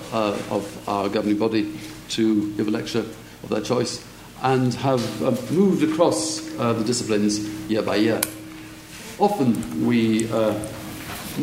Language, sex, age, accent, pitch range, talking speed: English, male, 50-69, British, 110-155 Hz, 135 wpm